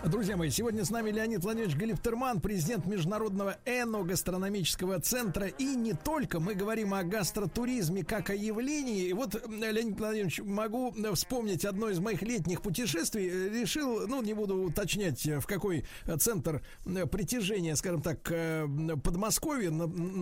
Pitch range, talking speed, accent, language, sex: 165-220 Hz, 140 wpm, native, Russian, male